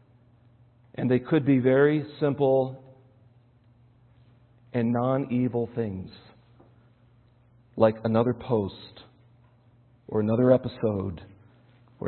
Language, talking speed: English, 80 wpm